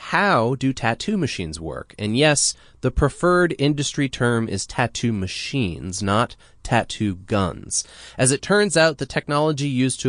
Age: 30-49